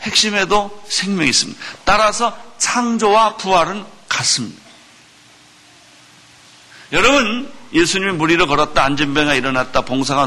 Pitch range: 140-205 Hz